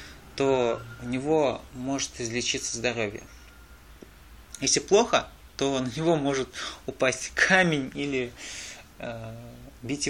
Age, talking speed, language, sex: 20-39, 100 wpm, Russian, male